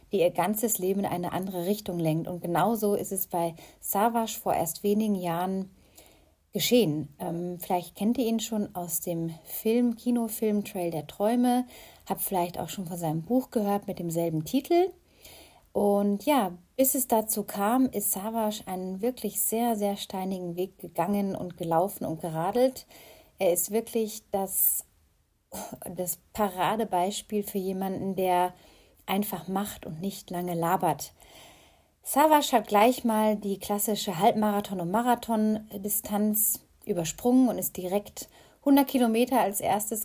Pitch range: 180-225 Hz